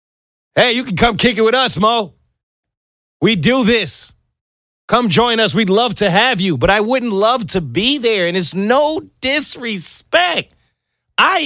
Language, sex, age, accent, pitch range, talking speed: English, male, 30-49, American, 180-270 Hz, 170 wpm